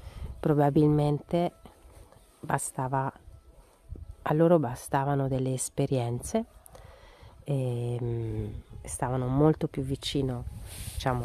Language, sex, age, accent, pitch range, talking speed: Italian, female, 40-59, native, 105-145 Hz, 70 wpm